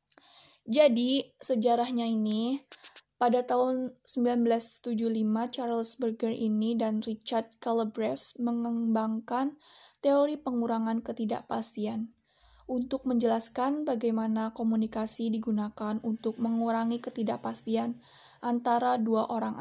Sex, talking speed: female, 85 wpm